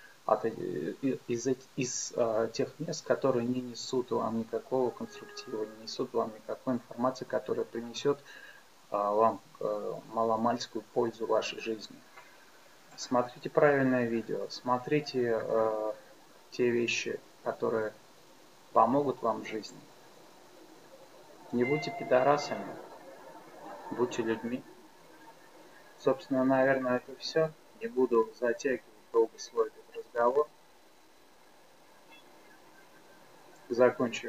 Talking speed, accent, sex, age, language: 85 wpm, native, male, 20-39, Russian